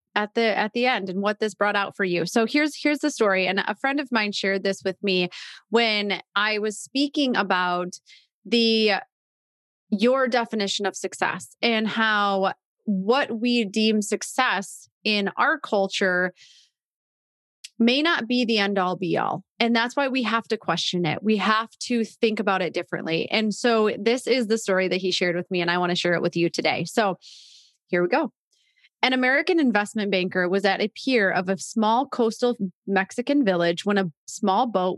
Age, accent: 30-49, American